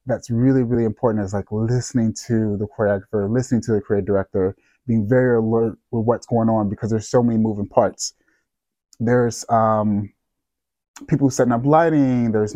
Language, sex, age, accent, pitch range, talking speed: English, male, 20-39, American, 110-130 Hz, 165 wpm